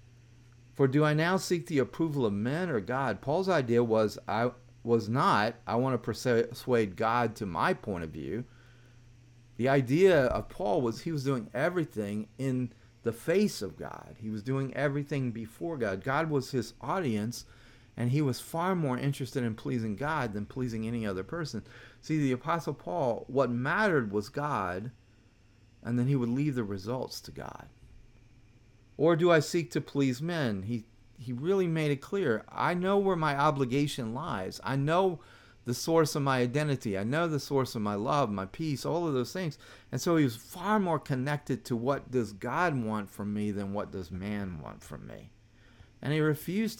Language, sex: English, male